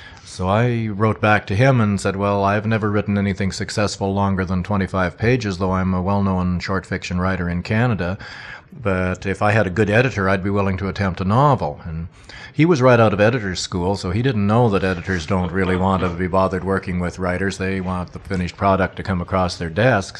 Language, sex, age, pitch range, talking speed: English, male, 40-59, 90-100 Hz, 220 wpm